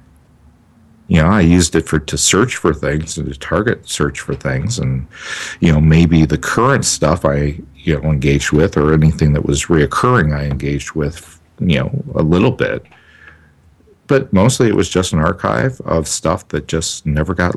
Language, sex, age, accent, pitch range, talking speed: English, male, 50-69, American, 75-90 Hz, 185 wpm